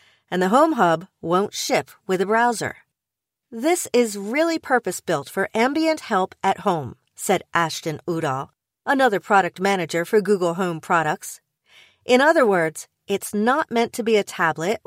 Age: 40-59